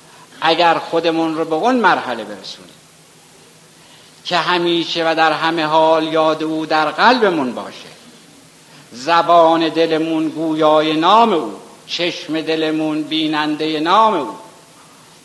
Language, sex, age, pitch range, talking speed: Persian, male, 60-79, 125-160 Hz, 110 wpm